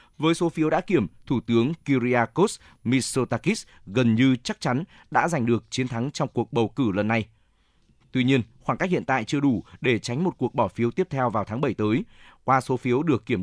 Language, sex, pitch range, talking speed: Vietnamese, male, 115-140 Hz, 220 wpm